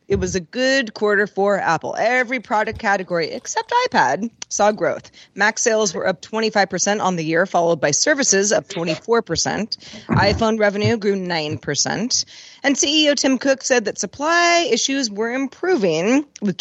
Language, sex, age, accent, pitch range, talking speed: English, female, 30-49, American, 175-260 Hz, 150 wpm